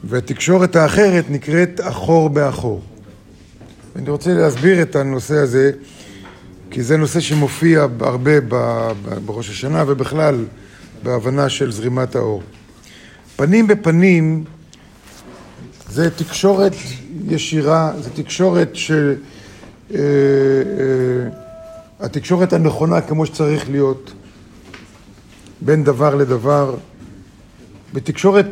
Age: 50-69